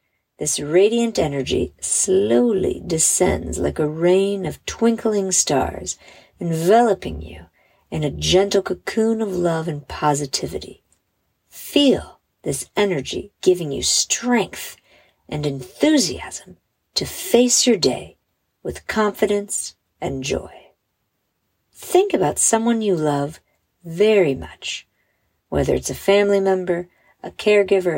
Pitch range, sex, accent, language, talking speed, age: 145-215 Hz, female, American, English, 110 wpm, 50-69